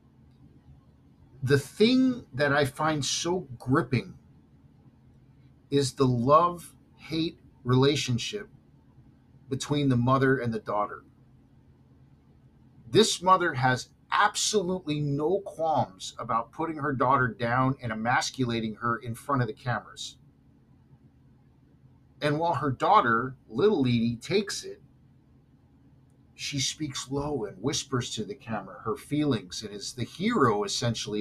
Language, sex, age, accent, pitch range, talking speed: English, male, 50-69, American, 120-145 Hz, 115 wpm